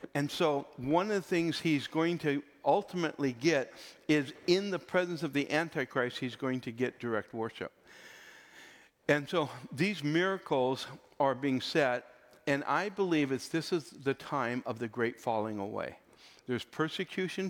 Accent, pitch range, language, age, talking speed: American, 120-150 Hz, English, 60-79, 160 wpm